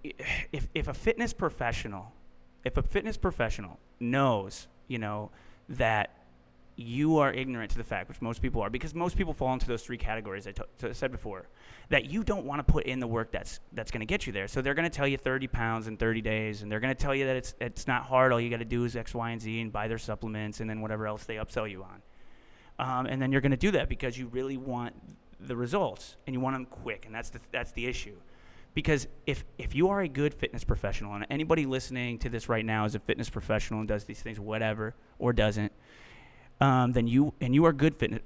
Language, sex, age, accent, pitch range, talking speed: English, male, 30-49, American, 110-135 Hz, 240 wpm